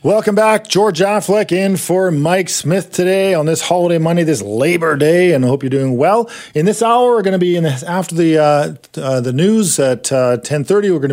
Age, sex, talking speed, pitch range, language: 40-59, male, 225 wpm, 120-165 Hz, English